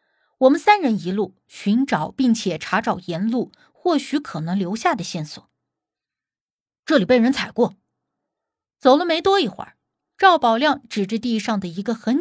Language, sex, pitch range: Chinese, female, 200-275 Hz